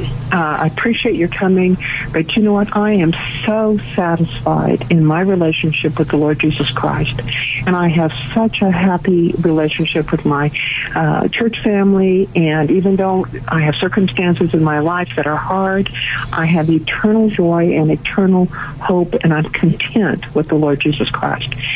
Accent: American